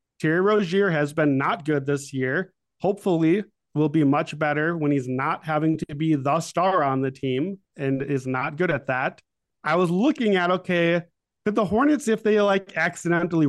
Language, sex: English, male